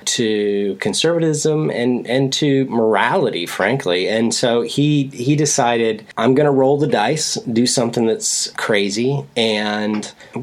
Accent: American